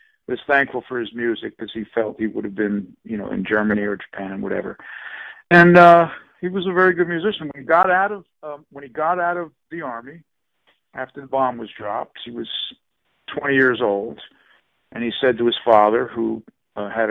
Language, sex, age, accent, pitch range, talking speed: English, male, 50-69, American, 110-140 Hz, 210 wpm